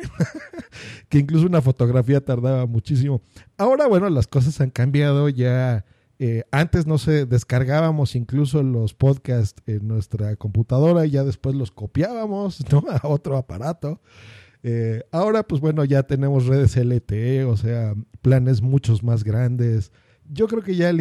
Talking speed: 150 wpm